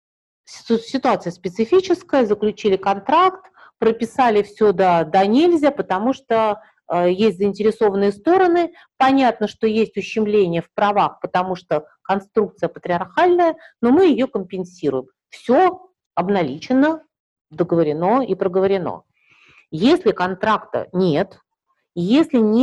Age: 40-59